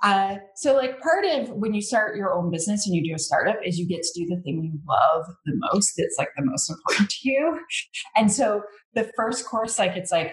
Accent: American